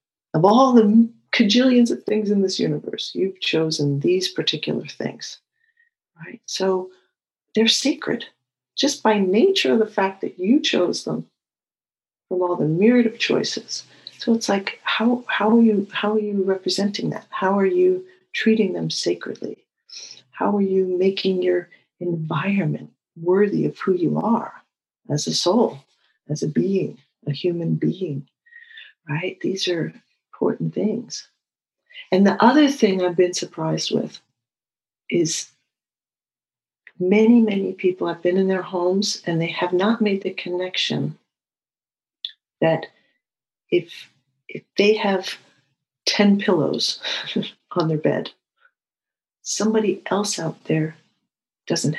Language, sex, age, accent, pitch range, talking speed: English, female, 50-69, American, 170-220 Hz, 135 wpm